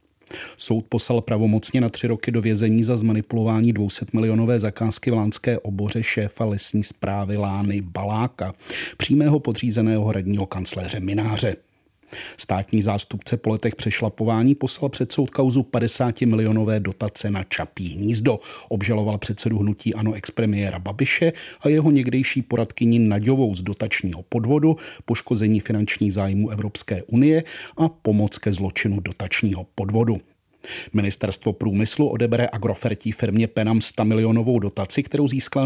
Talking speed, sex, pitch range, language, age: 130 wpm, male, 105-125 Hz, Czech, 40-59